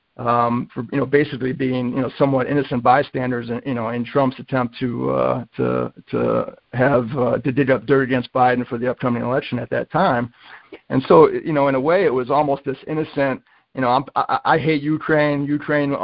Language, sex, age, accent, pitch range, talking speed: English, male, 50-69, American, 125-140 Hz, 210 wpm